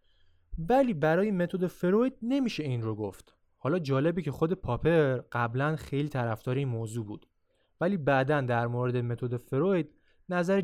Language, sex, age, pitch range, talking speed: Persian, male, 20-39, 115-170 Hz, 140 wpm